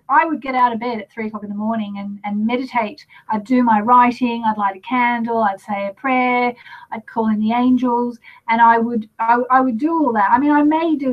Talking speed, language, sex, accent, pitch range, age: 250 wpm, English, female, Australian, 205-245 Hz, 40-59